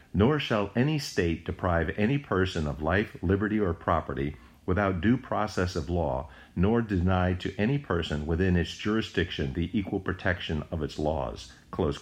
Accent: American